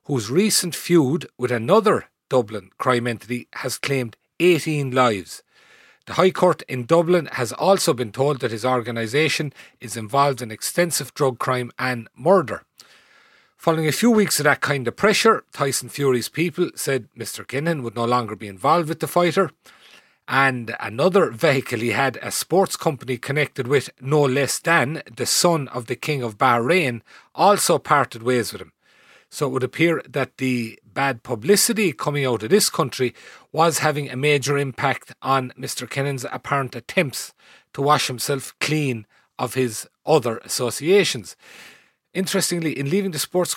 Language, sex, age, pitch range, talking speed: English, male, 40-59, 125-160 Hz, 160 wpm